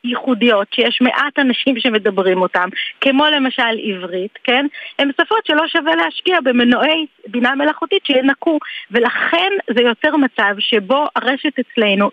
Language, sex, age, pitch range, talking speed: Hebrew, female, 30-49, 215-280 Hz, 130 wpm